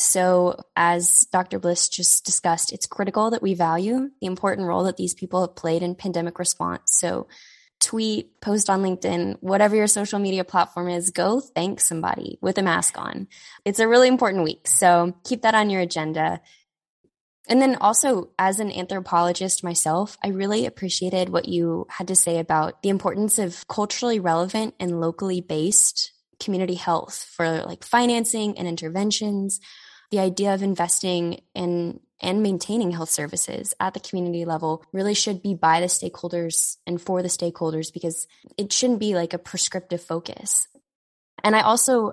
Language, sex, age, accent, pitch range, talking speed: English, female, 10-29, American, 175-210 Hz, 165 wpm